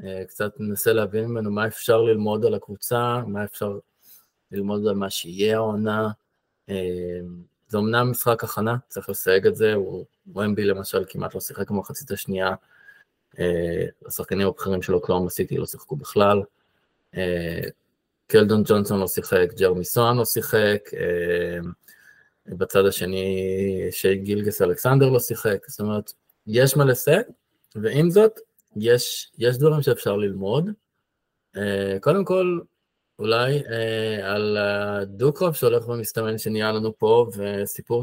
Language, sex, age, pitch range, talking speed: Hebrew, male, 20-39, 100-125 Hz, 135 wpm